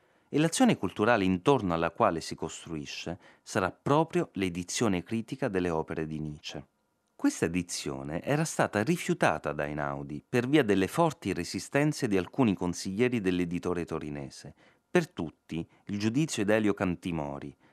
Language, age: Italian, 30-49